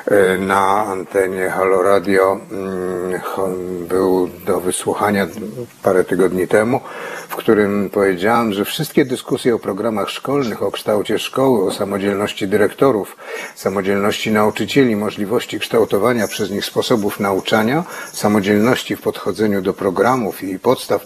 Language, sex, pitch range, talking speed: Polish, male, 95-125 Hz, 115 wpm